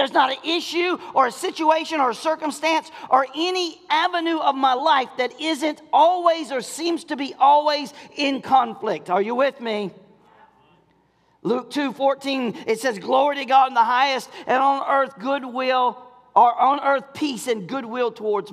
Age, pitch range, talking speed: 40-59, 185-280 Hz, 165 wpm